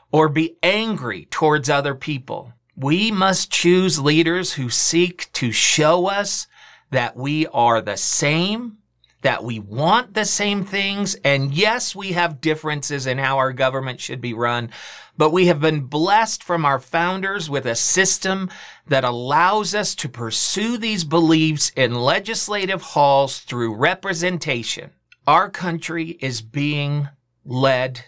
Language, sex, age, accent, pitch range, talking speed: English, male, 40-59, American, 125-175 Hz, 140 wpm